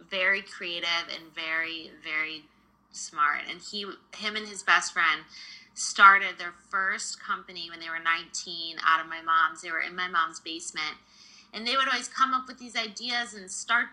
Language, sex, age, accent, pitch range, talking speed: English, female, 20-39, American, 175-225 Hz, 180 wpm